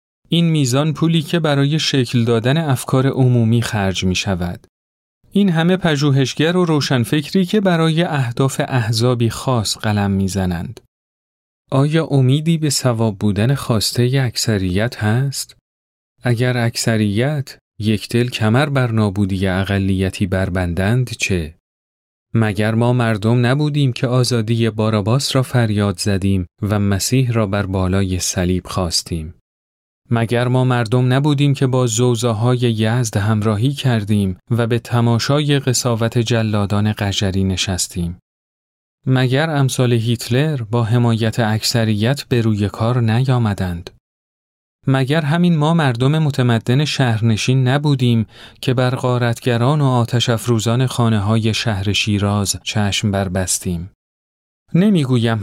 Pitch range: 100-130 Hz